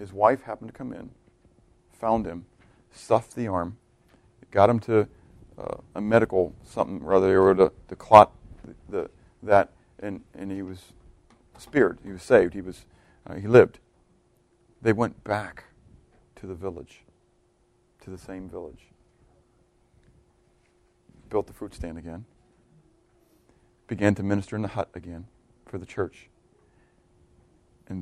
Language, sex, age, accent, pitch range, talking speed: English, male, 40-59, American, 90-115 Hz, 135 wpm